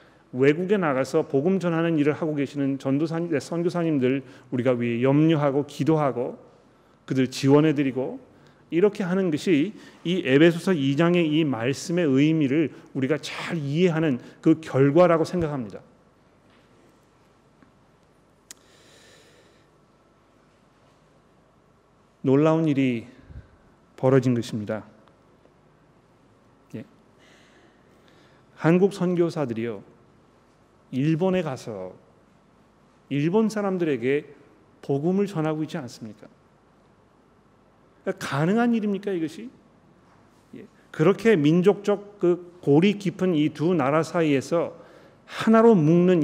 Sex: male